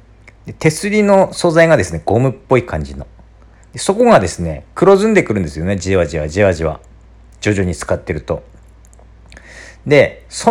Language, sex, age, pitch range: Japanese, male, 50-69, 95-160 Hz